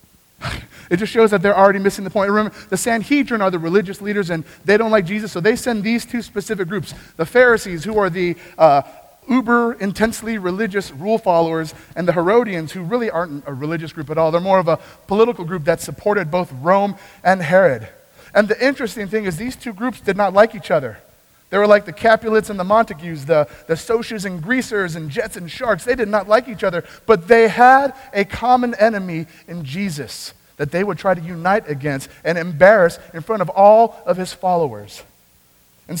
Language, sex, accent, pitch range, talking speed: English, male, American, 165-220 Hz, 205 wpm